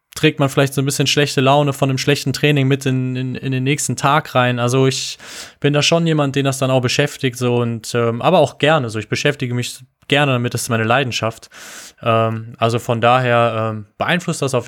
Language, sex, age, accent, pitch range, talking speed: German, male, 20-39, German, 115-140 Hz, 225 wpm